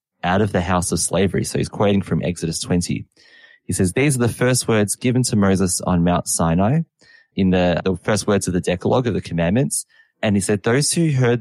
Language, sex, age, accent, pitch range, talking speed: English, male, 20-39, Australian, 90-120 Hz, 220 wpm